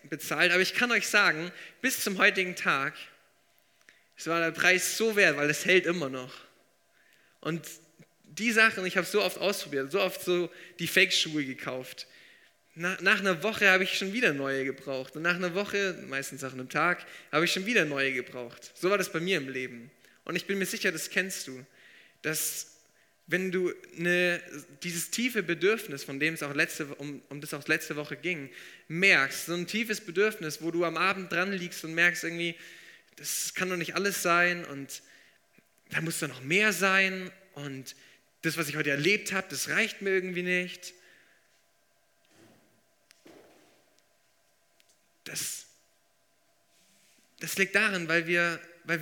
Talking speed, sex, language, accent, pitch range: 170 wpm, male, German, German, 150-190 Hz